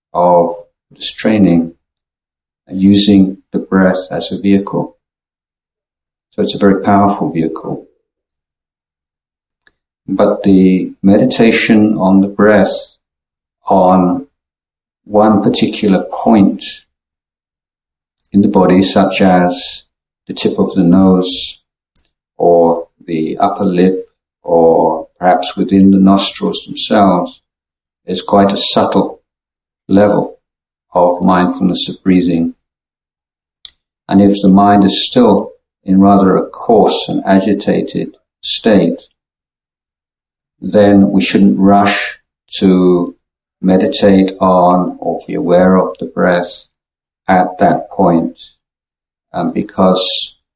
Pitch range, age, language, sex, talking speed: 75-95 Hz, 50-69, English, male, 100 wpm